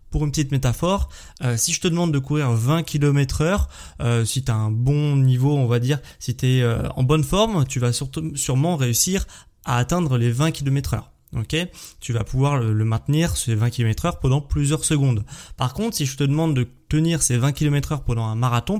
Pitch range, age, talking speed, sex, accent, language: 125-155 Hz, 20-39, 225 wpm, male, French, French